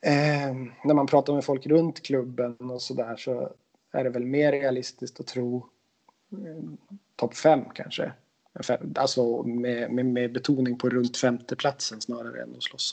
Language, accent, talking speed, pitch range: English, Swedish, 165 wpm, 125-165 Hz